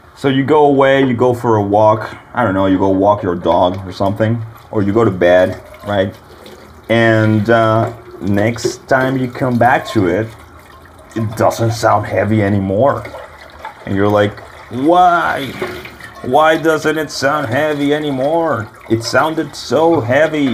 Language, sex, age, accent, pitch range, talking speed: English, male, 30-49, American, 100-130 Hz, 155 wpm